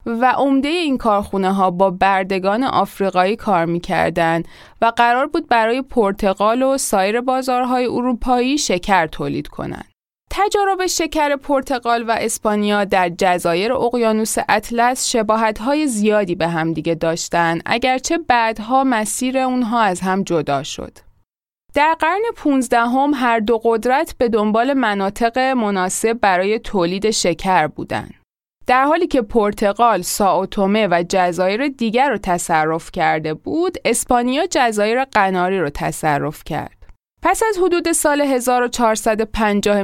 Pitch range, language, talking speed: 195-265 Hz, Persian, 125 wpm